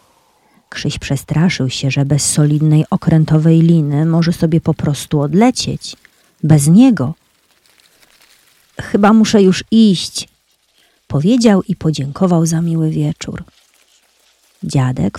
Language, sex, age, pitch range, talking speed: Polish, female, 40-59, 150-190 Hz, 105 wpm